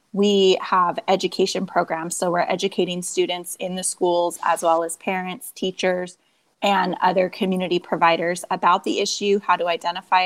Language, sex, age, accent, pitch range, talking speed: English, female, 20-39, American, 180-205 Hz, 150 wpm